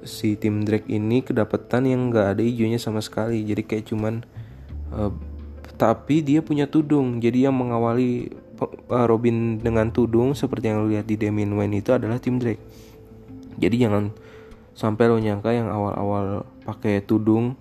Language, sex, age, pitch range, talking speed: Indonesian, male, 20-39, 105-115 Hz, 155 wpm